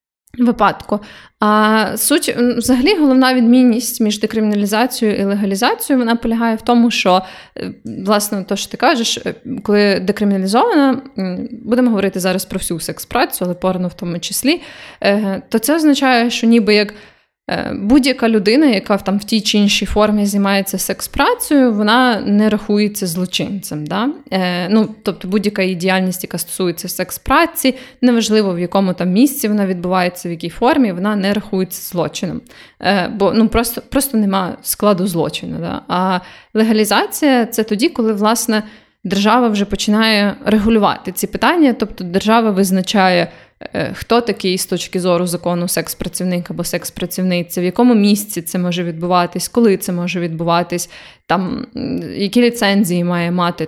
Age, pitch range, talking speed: 20-39, 185-235 Hz, 130 wpm